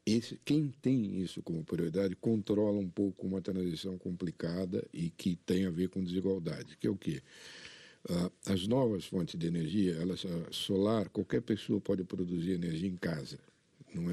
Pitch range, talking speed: 95-110 Hz, 165 wpm